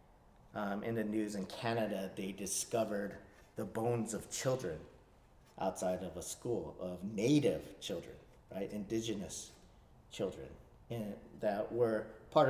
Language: English